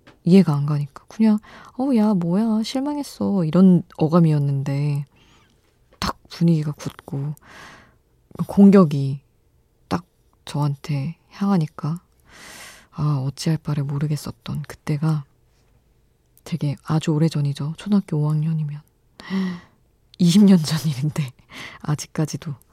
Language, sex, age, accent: Korean, female, 20-39, native